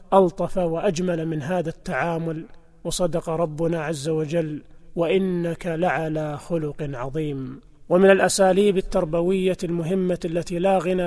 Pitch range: 170-190 Hz